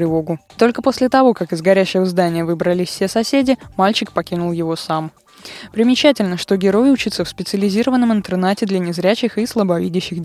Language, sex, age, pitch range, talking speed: Russian, female, 20-39, 170-230 Hz, 145 wpm